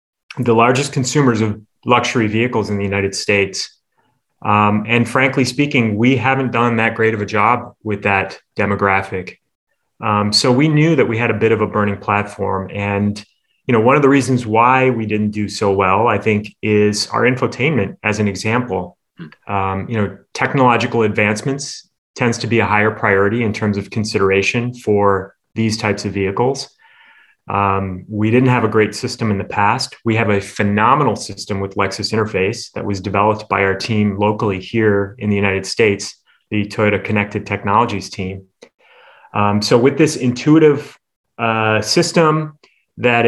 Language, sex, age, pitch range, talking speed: English, male, 30-49, 100-125 Hz, 170 wpm